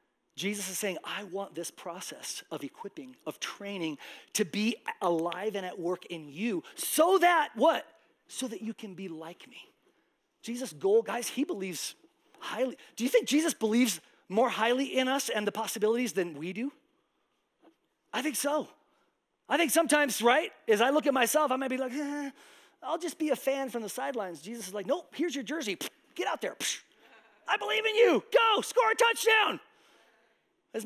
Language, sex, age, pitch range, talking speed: English, male, 30-49, 205-330 Hz, 185 wpm